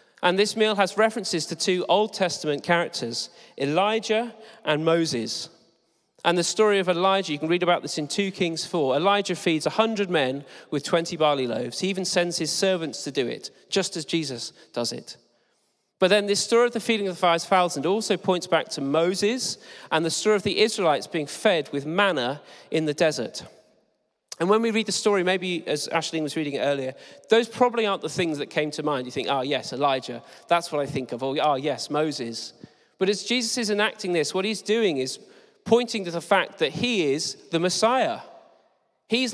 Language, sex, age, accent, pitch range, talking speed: English, male, 40-59, British, 150-205 Hz, 200 wpm